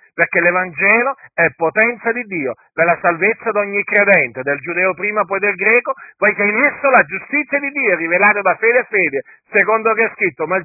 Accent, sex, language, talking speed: native, male, Italian, 210 wpm